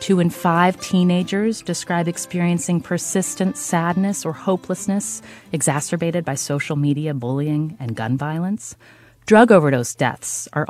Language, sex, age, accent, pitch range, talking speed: English, female, 30-49, American, 145-200 Hz, 125 wpm